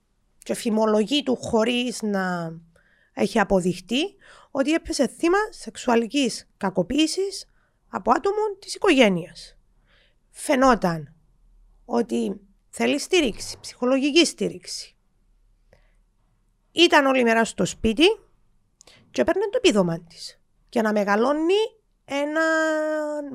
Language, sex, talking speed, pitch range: Greek, female, 95 wpm, 195-305 Hz